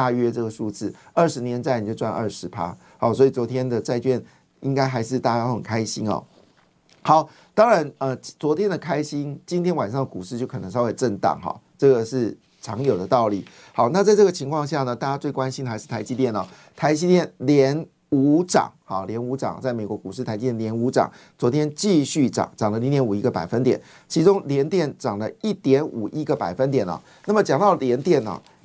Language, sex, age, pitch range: Chinese, male, 50-69, 120-155 Hz